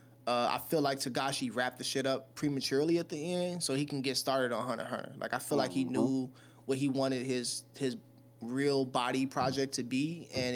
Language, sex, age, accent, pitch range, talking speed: English, male, 20-39, American, 120-140 Hz, 215 wpm